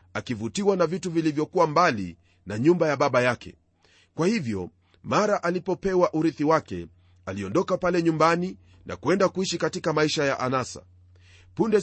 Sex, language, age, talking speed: male, Swahili, 40-59, 135 wpm